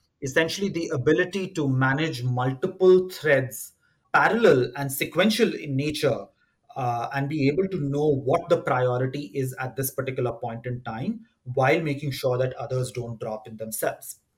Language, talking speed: English, 155 wpm